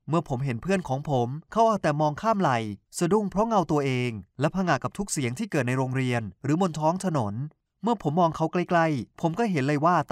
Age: 20-39